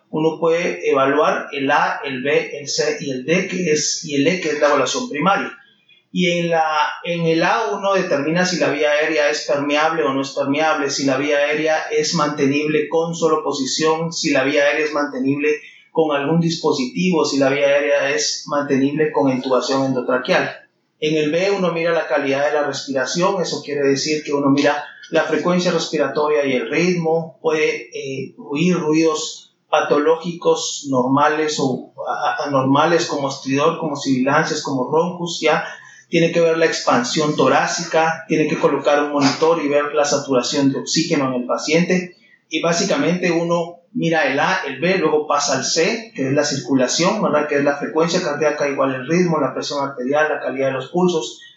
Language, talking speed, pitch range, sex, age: Spanish, 185 wpm, 145-165 Hz, male, 30-49